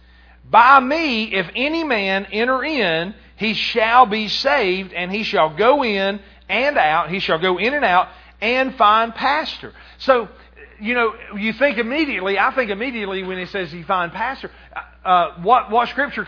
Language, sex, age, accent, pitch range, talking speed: English, male, 40-59, American, 170-240 Hz, 170 wpm